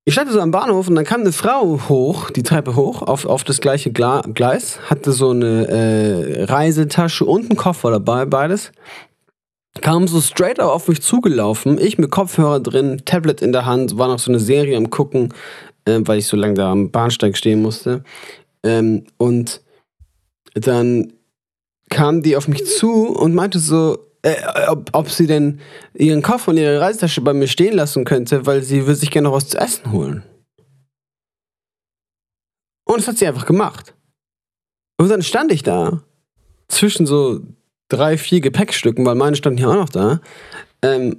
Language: German